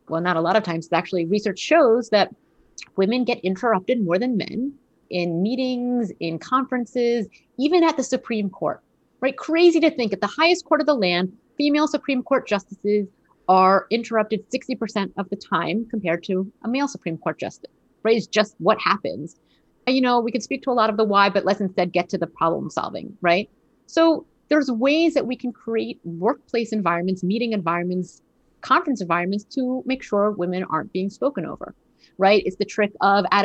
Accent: American